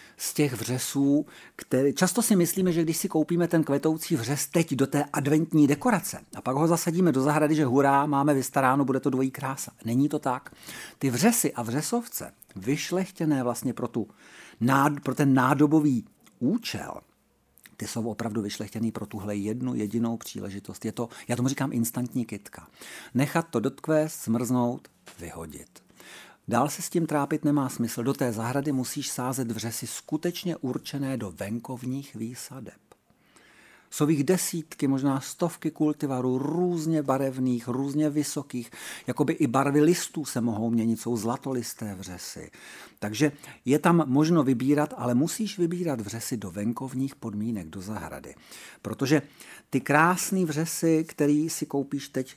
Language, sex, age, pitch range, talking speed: Czech, male, 50-69, 120-155 Hz, 150 wpm